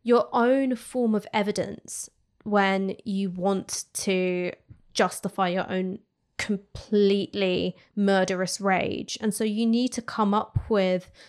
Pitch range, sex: 190-215 Hz, female